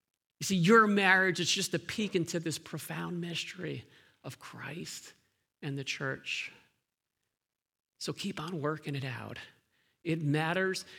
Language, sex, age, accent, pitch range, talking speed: English, male, 50-69, American, 155-190 Hz, 135 wpm